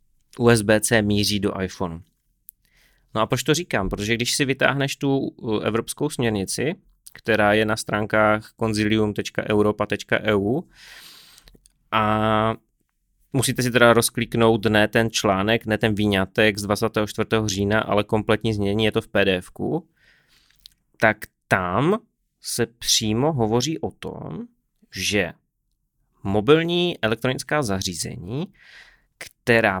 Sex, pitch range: male, 100-120 Hz